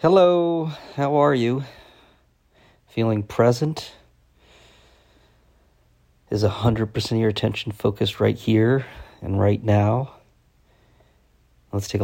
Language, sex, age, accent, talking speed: English, male, 40-59, American, 95 wpm